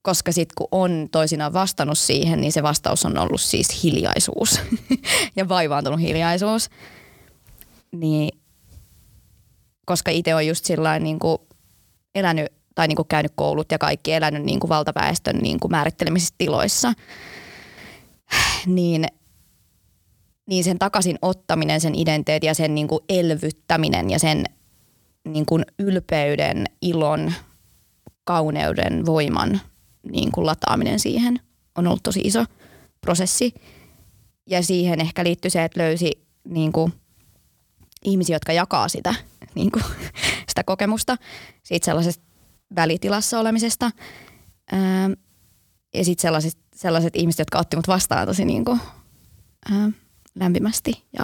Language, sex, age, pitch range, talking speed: Finnish, female, 20-39, 150-185 Hz, 115 wpm